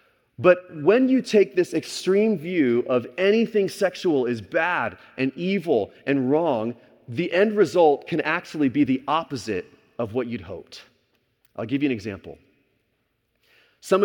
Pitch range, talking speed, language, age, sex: 120-155 Hz, 145 wpm, English, 30-49, male